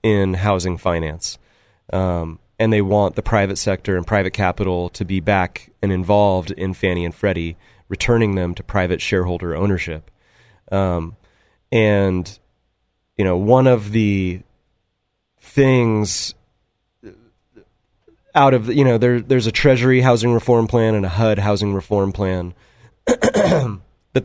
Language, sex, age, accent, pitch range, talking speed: English, male, 30-49, American, 95-120 Hz, 135 wpm